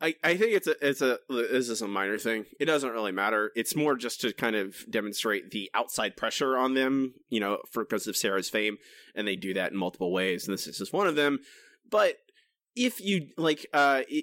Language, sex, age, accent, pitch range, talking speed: English, male, 20-39, American, 115-175 Hz, 230 wpm